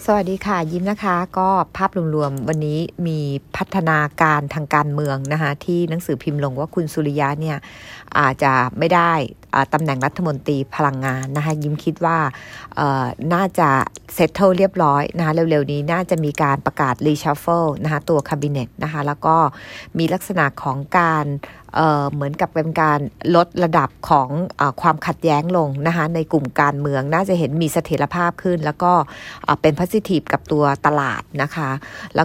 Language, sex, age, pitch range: English, female, 60-79, 145-175 Hz